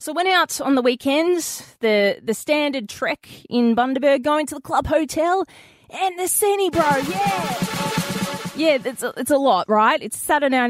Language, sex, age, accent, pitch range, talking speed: English, female, 20-39, Australian, 215-300 Hz, 175 wpm